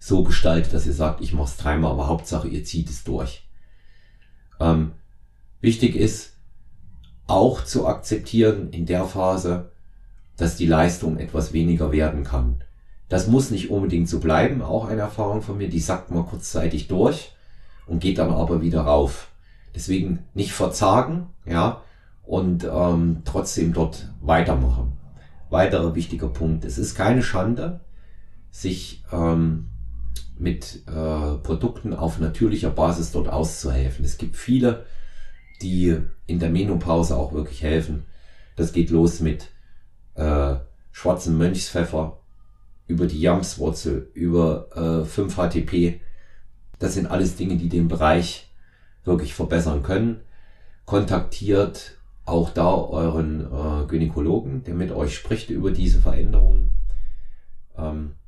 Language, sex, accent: German, male, German